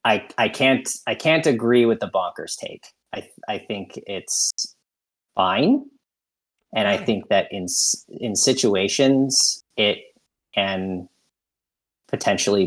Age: 30-49